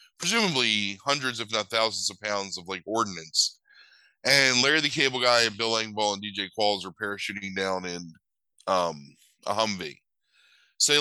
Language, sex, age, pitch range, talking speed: English, male, 20-39, 100-130 Hz, 165 wpm